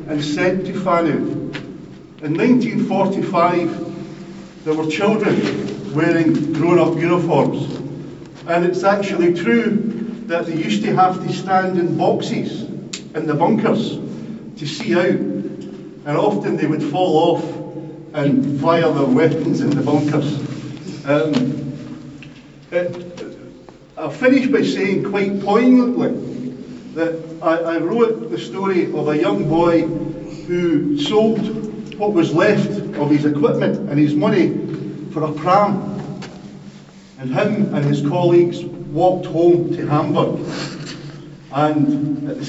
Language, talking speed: Danish, 125 wpm